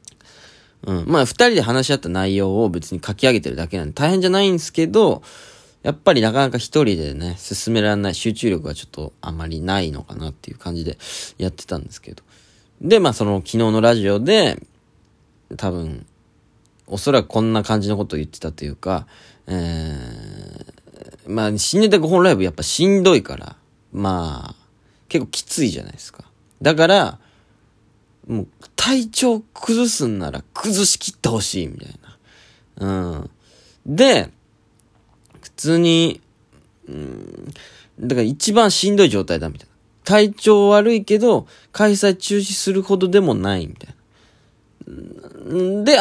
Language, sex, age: Japanese, male, 20-39